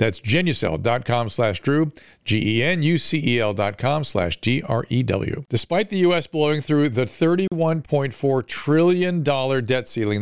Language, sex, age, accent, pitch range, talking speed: English, male, 50-69, American, 115-150 Hz, 105 wpm